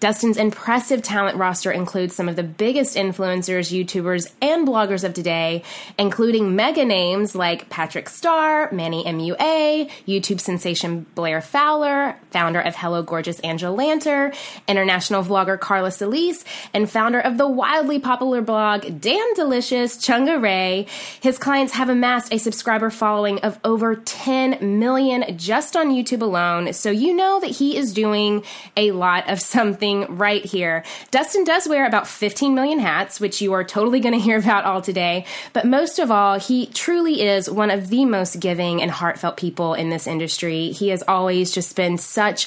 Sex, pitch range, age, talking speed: female, 180-250 Hz, 20-39, 165 wpm